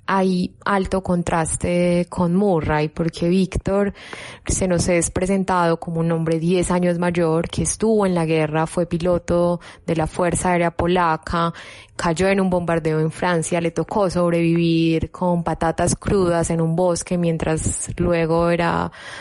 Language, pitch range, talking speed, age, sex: Spanish, 165-185 Hz, 145 wpm, 20-39, female